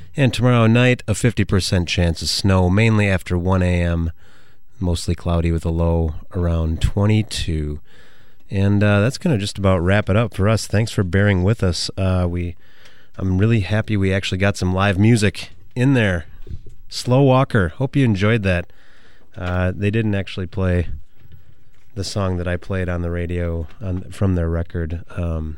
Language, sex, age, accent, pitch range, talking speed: English, male, 30-49, American, 85-105 Hz, 170 wpm